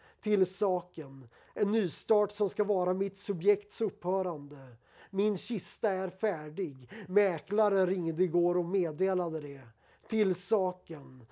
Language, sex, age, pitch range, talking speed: Swedish, male, 30-49, 180-205 Hz, 115 wpm